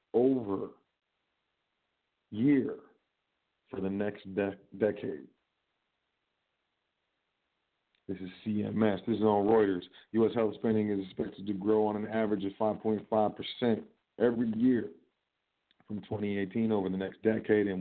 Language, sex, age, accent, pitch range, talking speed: English, male, 40-59, American, 95-105 Hz, 120 wpm